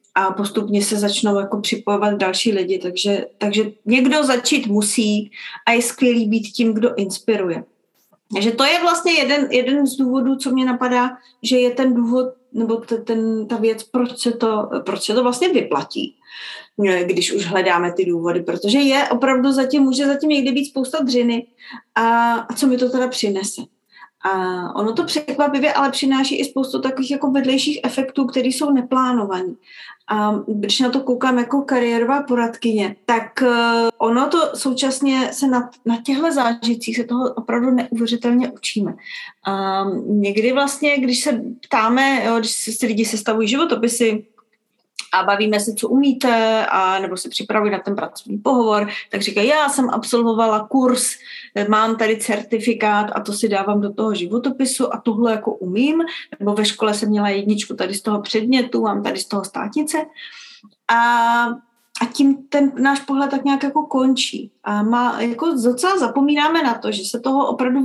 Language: Czech